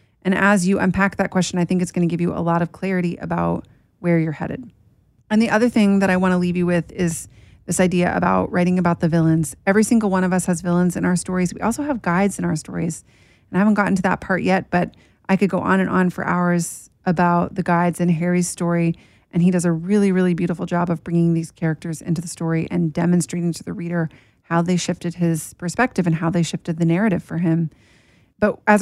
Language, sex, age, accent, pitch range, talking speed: English, female, 30-49, American, 170-195 Hz, 240 wpm